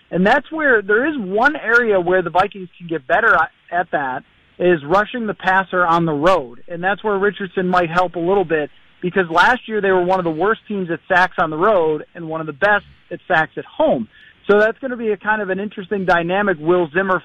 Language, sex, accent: English, male, American